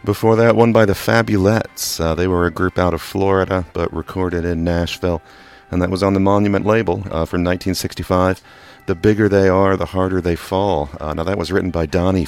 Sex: male